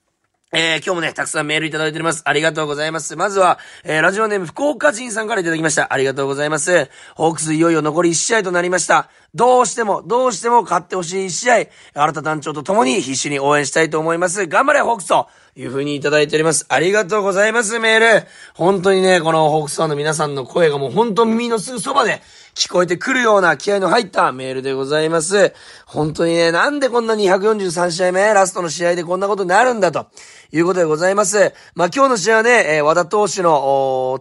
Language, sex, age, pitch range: Japanese, male, 30-49, 155-210 Hz